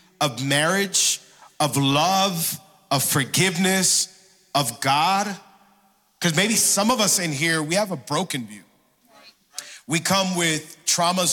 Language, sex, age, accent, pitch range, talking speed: English, male, 40-59, American, 150-190 Hz, 125 wpm